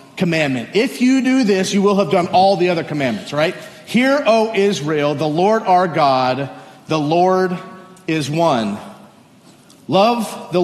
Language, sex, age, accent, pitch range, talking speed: English, male, 40-59, American, 160-225 Hz, 150 wpm